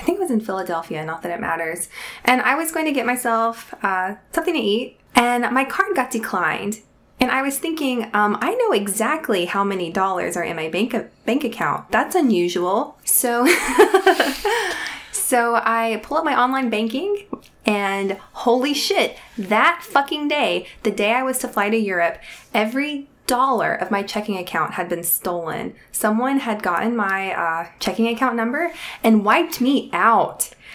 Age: 20-39